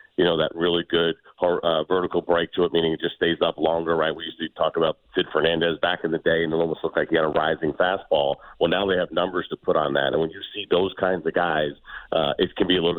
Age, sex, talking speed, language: 40-59, male, 280 wpm, English